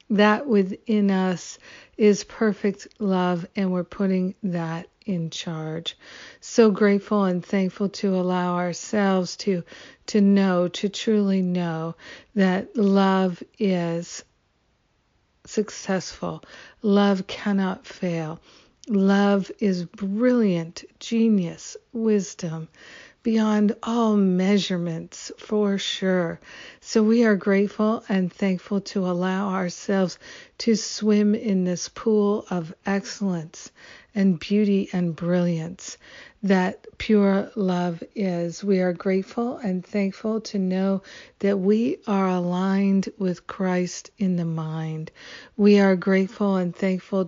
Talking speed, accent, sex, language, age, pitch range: 110 wpm, American, female, English, 50-69, 180-210 Hz